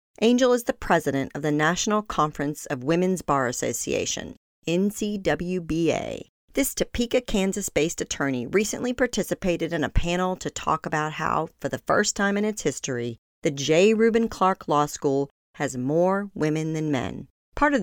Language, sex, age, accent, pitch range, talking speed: English, female, 40-59, American, 150-205 Hz, 155 wpm